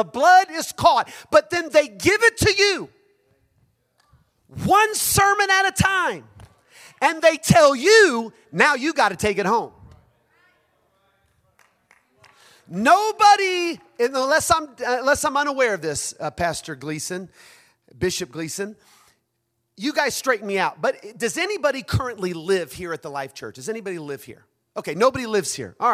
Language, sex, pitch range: English, male, 210-325 Hz